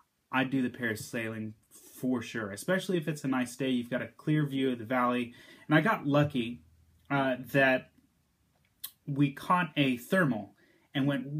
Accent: American